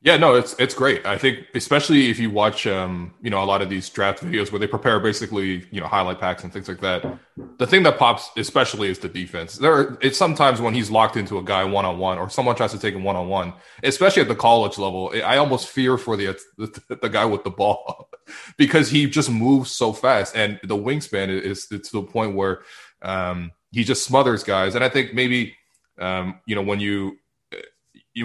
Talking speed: 225 wpm